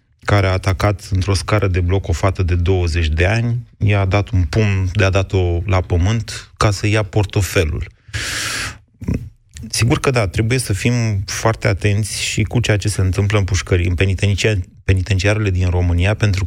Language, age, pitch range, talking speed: Romanian, 30-49, 95-115 Hz, 175 wpm